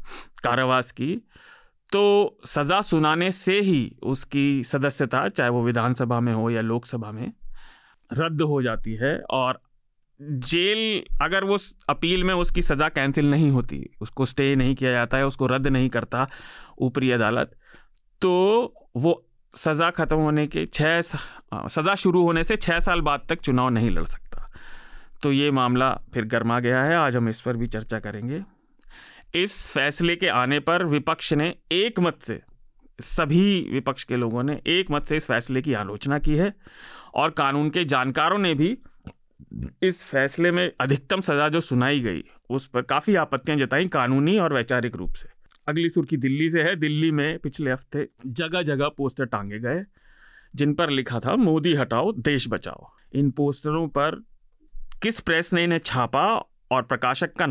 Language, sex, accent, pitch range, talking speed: Hindi, male, native, 125-170 Hz, 165 wpm